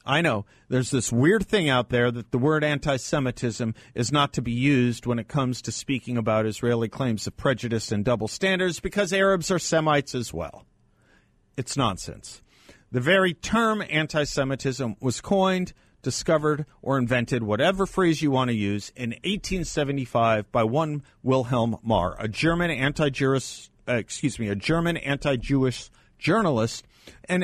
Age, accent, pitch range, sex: 50-69, American, 115-160 Hz, male